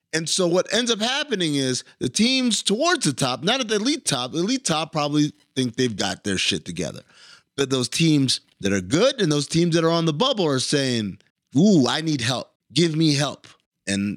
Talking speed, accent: 215 wpm, American